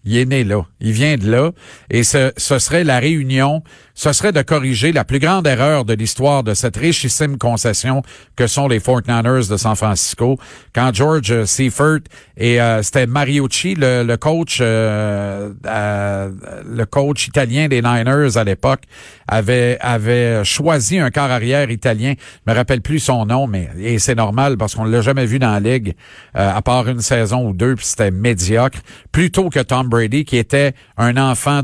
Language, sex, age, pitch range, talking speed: French, male, 50-69, 110-135 Hz, 185 wpm